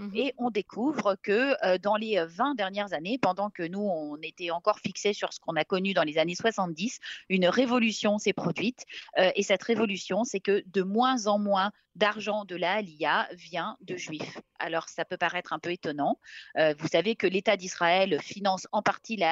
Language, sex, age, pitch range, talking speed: French, female, 30-49, 185-230 Hz, 200 wpm